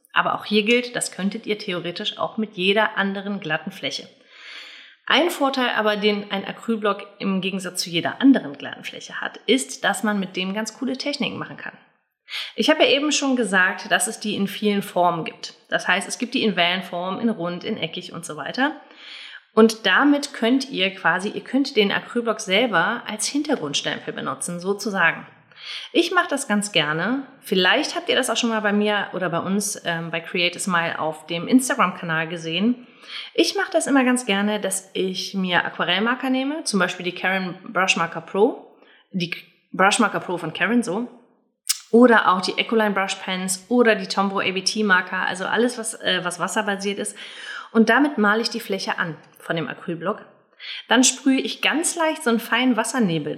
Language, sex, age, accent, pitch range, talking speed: German, female, 30-49, German, 185-240 Hz, 185 wpm